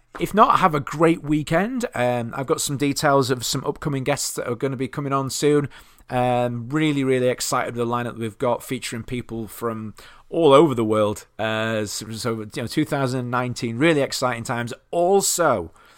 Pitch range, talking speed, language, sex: 115-140 Hz, 190 wpm, English, male